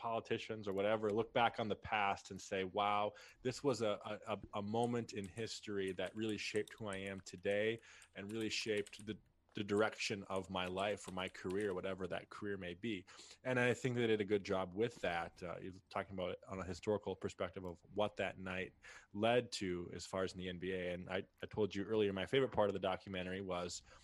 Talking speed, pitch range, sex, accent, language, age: 215 wpm, 90-105 Hz, male, American, English, 20-39